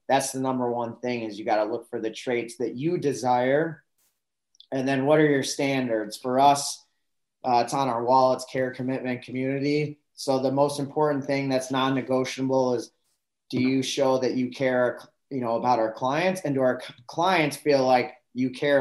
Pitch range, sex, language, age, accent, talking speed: 125-145 Hz, male, English, 20-39, American, 190 wpm